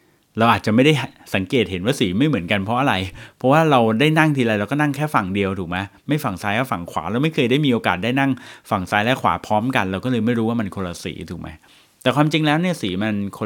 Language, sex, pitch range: Thai, male, 95-125 Hz